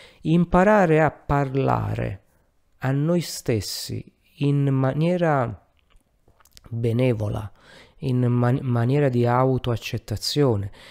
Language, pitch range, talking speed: Italian, 105-140 Hz, 70 wpm